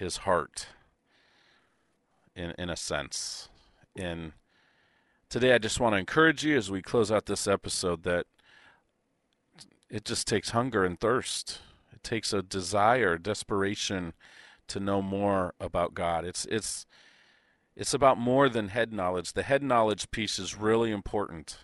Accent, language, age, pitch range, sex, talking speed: American, English, 40-59, 90-110 Hz, male, 145 wpm